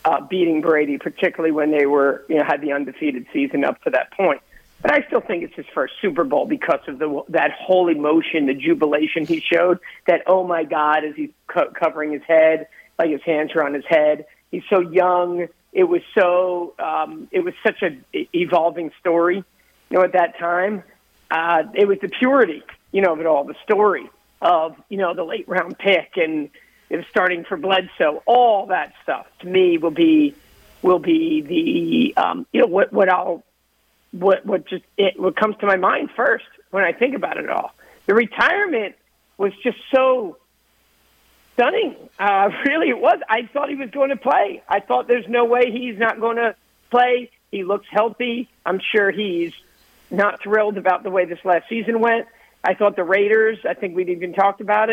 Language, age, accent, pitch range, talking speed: English, 50-69, American, 170-230 Hz, 195 wpm